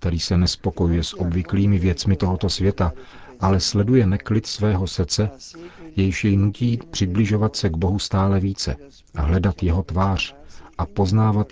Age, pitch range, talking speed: 40-59, 80-100 Hz, 145 wpm